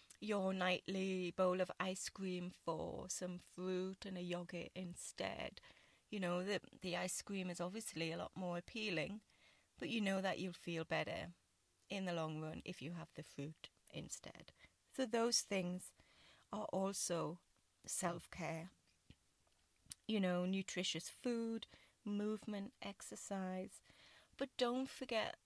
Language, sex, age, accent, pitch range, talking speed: English, female, 30-49, British, 175-205 Hz, 135 wpm